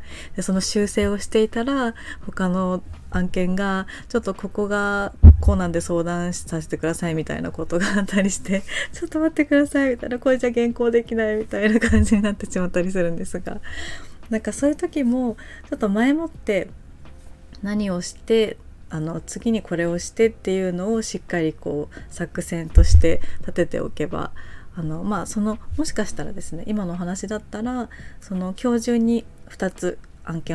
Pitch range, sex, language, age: 165-235 Hz, female, Japanese, 20-39